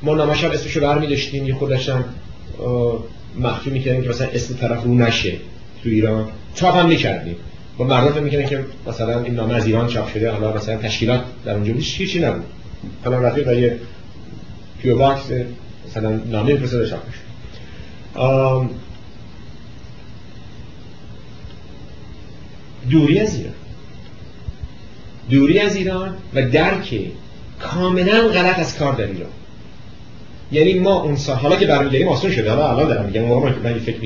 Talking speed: 135 wpm